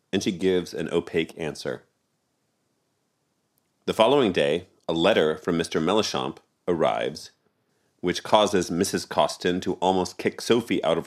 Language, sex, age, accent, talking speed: English, male, 40-59, American, 135 wpm